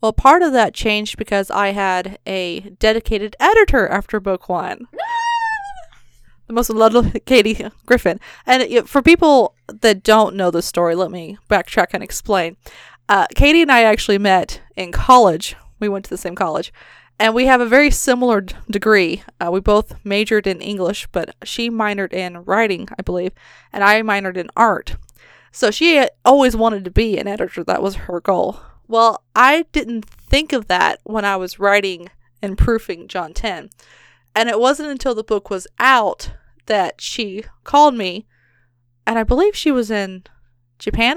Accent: American